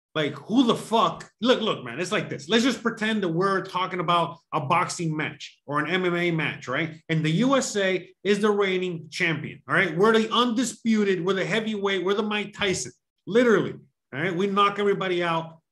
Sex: male